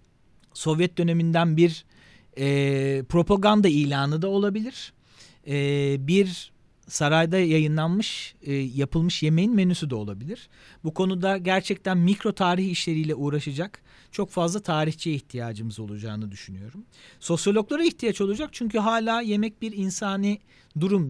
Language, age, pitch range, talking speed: Turkish, 40-59, 150-200 Hz, 115 wpm